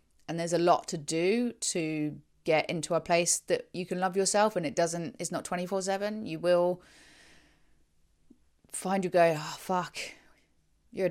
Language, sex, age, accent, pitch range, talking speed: English, female, 20-39, British, 155-185 Hz, 175 wpm